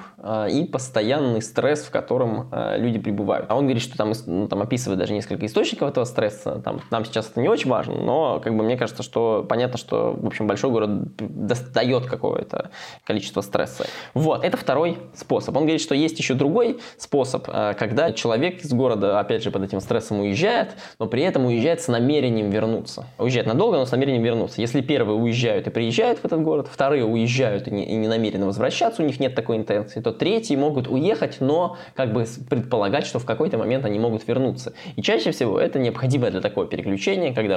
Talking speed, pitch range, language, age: 185 wpm, 110-145 Hz, Russian, 20-39